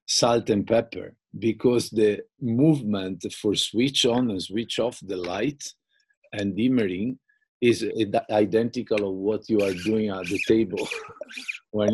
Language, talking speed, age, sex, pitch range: English, 135 wpm, 50-69, male, 100-135 Hz